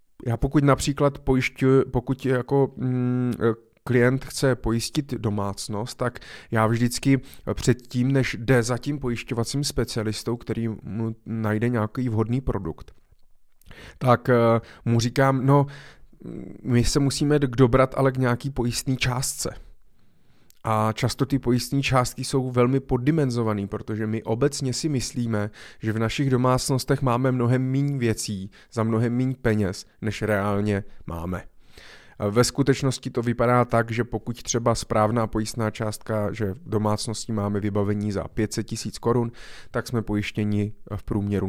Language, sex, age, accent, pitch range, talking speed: Czech, male, 20-39, native, 110-135 Hz, 135 wpm